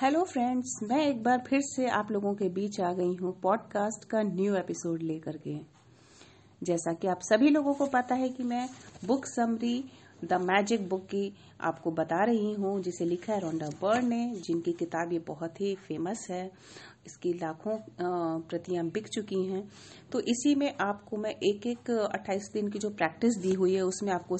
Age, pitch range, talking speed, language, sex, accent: 40-59, 175-215 Hz, 185 wpm, Hindi, female, native